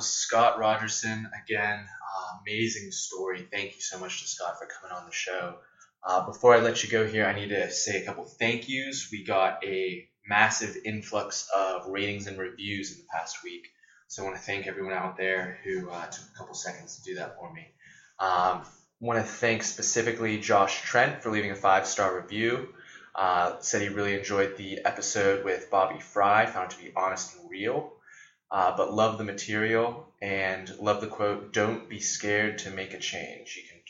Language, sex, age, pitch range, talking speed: English, male, 20-39, 100-115 Hz, 195 wpm